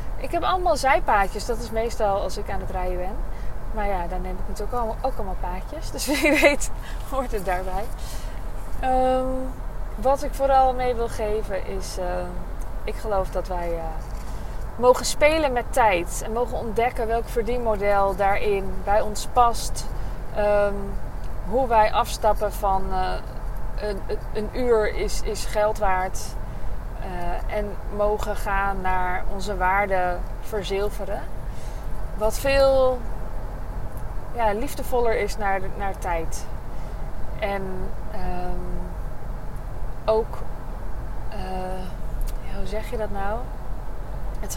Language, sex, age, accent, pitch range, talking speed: Dutch, female, 20-39, Dutch, 185-240 Hz, 125 wpm